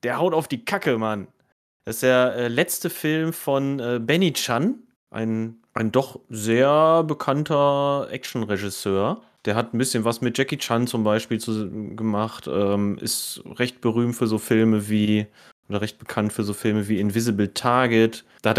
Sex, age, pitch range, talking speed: male, 30-49, 105-130 Hz, 165 wpm